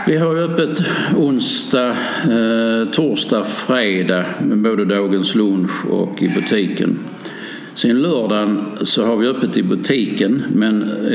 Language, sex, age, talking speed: Swedish, male, 60-79, 125 wpm